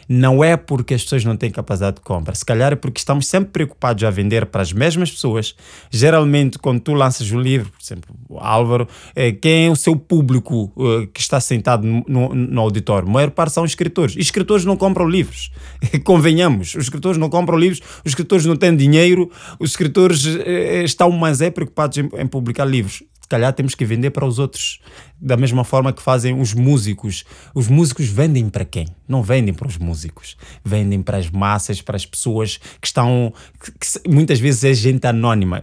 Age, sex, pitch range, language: 20-39, male, 115-155 Hz, Portuguese